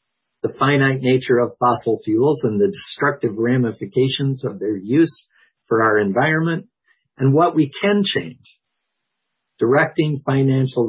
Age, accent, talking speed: 50-69, American, 125 wpm